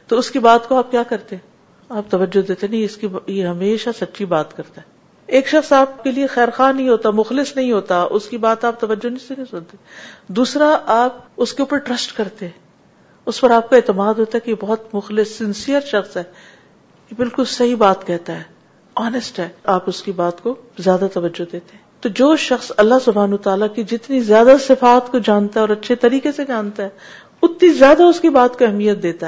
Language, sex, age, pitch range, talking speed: Urdu, female, 50-69, 195-250 Hz, 215 wpm